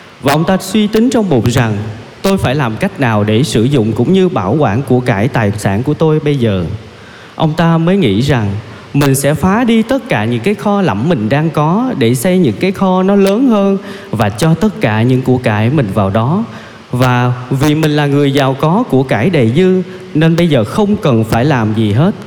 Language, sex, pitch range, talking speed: Vietnamese, male, 115-185 Hz, 225 wpm